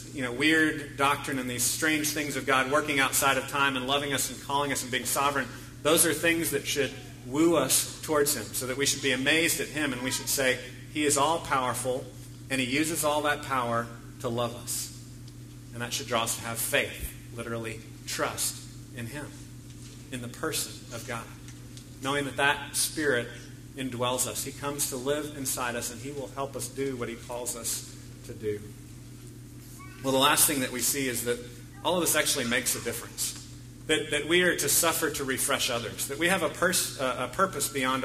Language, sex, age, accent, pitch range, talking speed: English, male, 40-59, American, 120-150 Hz, 210 wpm